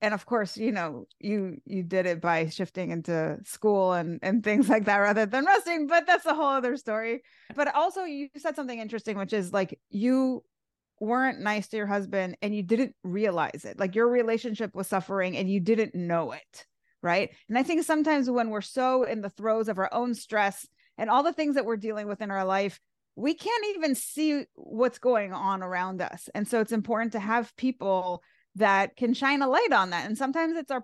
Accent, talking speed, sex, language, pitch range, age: American, 215 wpm, female, English, 195-255 Hz, 30-49